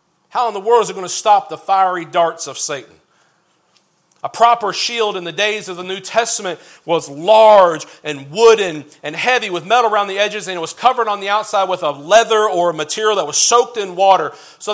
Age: 40-59